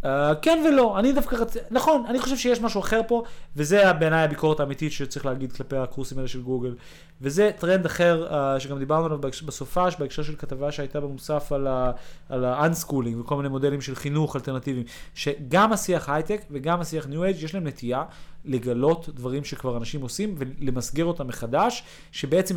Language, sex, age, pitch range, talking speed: Hebrew, male, 30-49, 135-180 Hz, 170 wpm